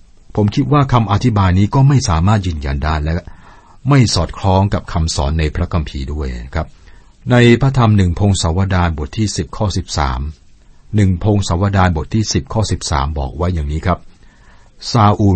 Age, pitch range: 60-79, 80-105 Hz